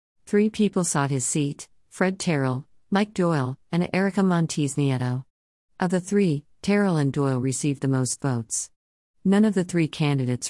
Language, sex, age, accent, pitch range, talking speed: English, female, 50-69, American, 130-170 Hz, 155 wpm